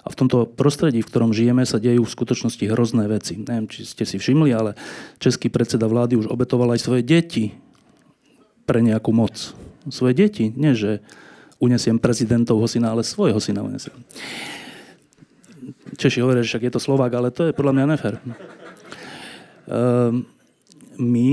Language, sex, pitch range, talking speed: Slovak, male, 115-140 Hz, 155 wpm